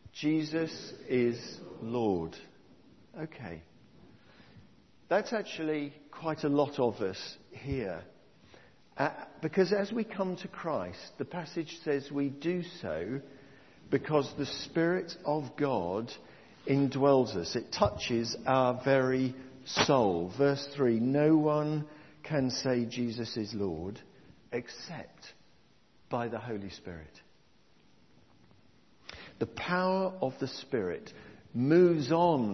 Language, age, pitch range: English, 50-69, 120-150 Hz